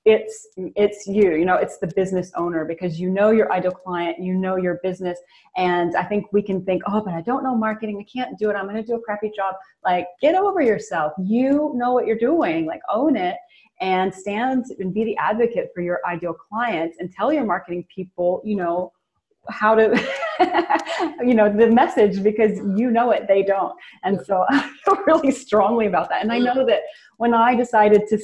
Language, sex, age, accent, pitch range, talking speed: English, female, 30-49, American, 180-235 Hz, 210 wpm